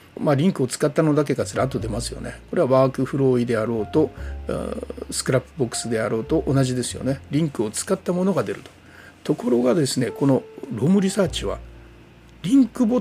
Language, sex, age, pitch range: Japanese, male, 60-79, 115-170 Hz